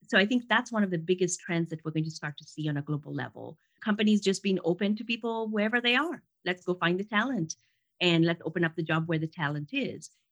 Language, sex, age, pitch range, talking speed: English, female, 30-49, 165-210 Hz, 255 wpm